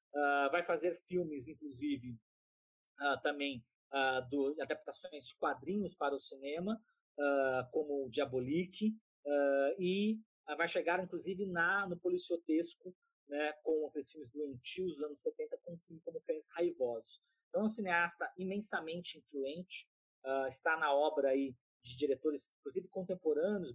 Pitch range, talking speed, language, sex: 140-185 Hz, 140 wpm, Portuguese, male